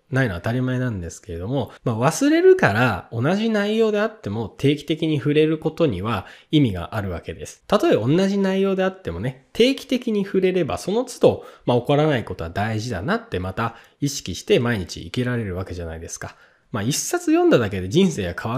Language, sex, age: Japanese, male, 20-39